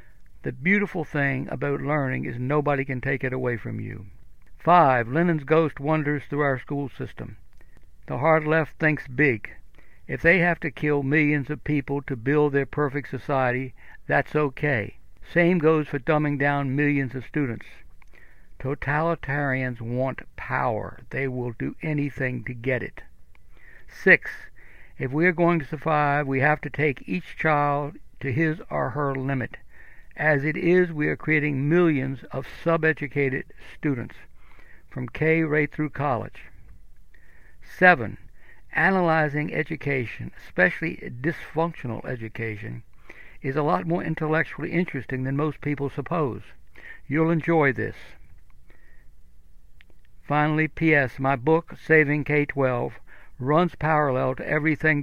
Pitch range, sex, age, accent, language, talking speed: 130-155 Hz, male, 60-79, American, English, 130 wpm